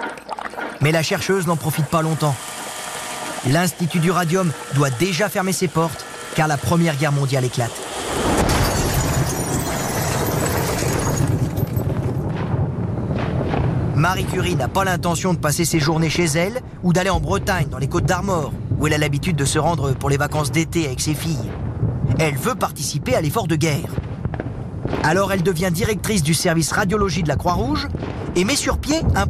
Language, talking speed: French, 155 wpm